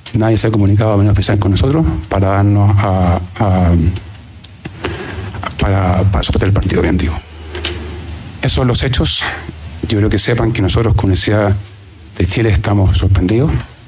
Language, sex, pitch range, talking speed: Spanish, male, 95-110 Hz, 150 wpm